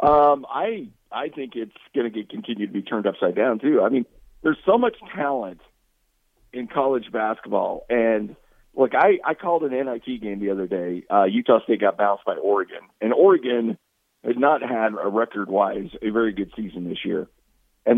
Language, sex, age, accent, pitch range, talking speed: English, male, 40-59, American, 110-135 Hz, 185 wpm